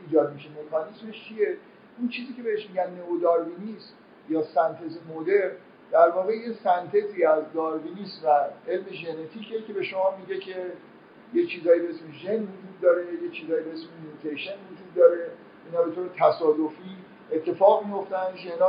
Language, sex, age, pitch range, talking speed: Persian, male, 50-69, 160-215 Hz, 150 wpm